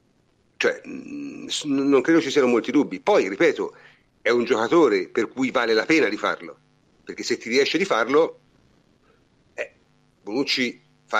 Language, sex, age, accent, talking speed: Italian, male, 50-69, native, 150 wpm